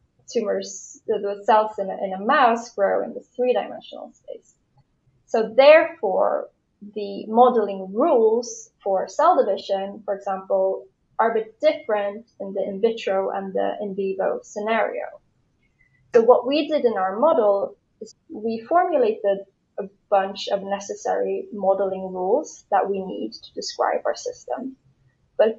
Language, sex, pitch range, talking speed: English, female, 195-265 Hz, 140 wpm